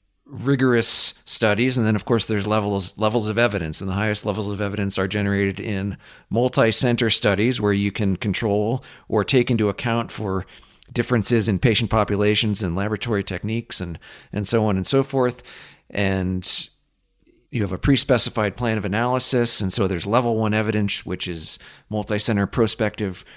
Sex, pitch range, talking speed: male, 100-125 Hz, 160 wpm